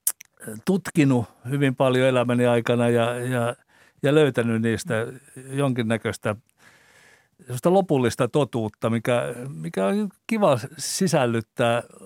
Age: 60-79